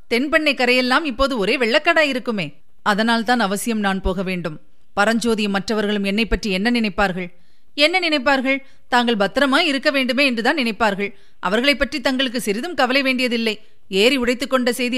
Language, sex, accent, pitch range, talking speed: Tamil, female, native, 195-250 Hz, 110 wpm